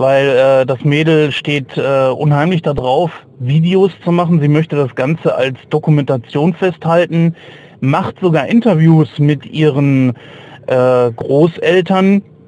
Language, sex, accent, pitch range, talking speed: German, male, German, 130-155 Hz, 120 wpm